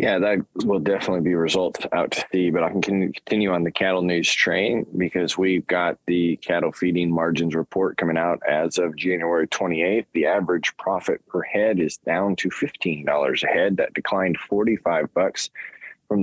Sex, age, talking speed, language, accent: male, 20-39, 180 wpm, English, American